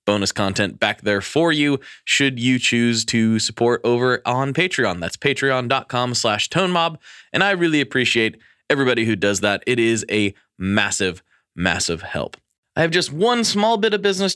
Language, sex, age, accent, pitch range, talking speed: English, male, 20-39, American, 115-165 Hz, 165 wpm